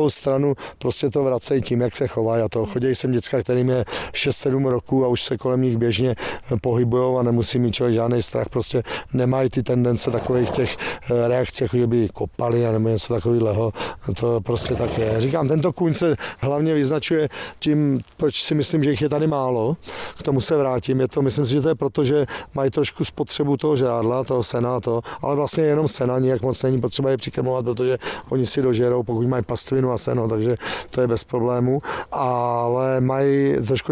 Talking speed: 200 wpm